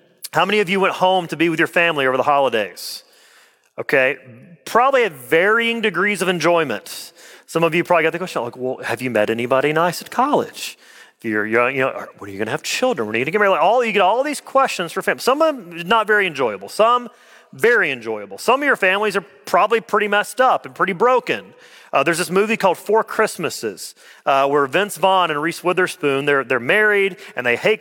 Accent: American